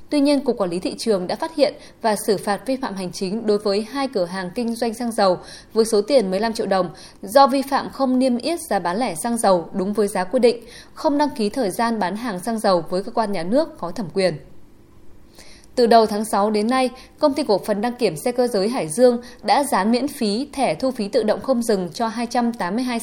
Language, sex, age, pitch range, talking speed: Vietnamese, female, 20-39, 195-260 Hz, 250 wpm